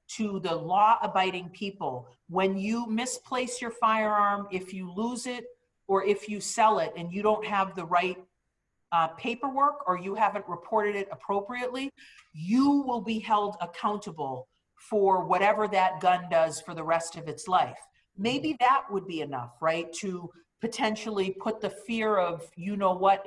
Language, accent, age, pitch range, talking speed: English, American, 40-59, 175-220 Hz, 155 wpm